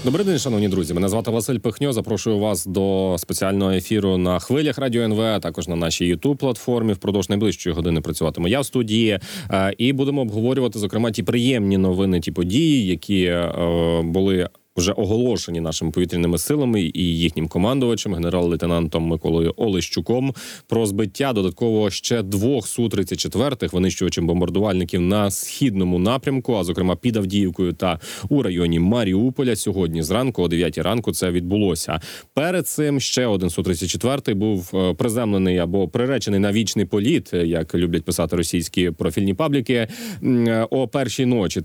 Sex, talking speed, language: male, 140 wpm, Ukrainian